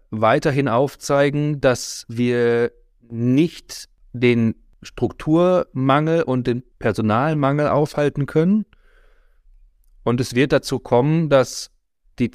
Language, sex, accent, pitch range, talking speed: German, male, German, 115-135 Hz, 90 wpm